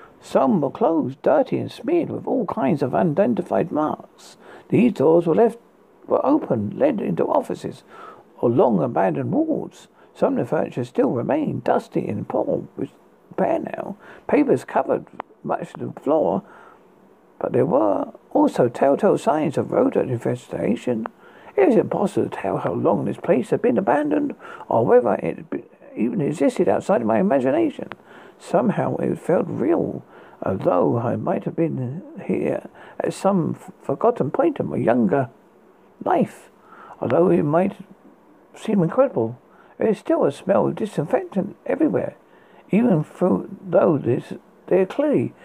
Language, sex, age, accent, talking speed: English, male, 60-79, British, 145 wpm